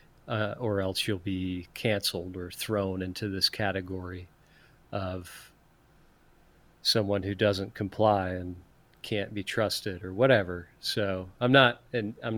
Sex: male